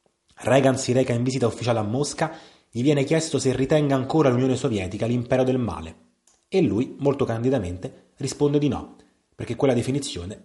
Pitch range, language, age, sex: 110-135 Hz, Italian, 30-49, male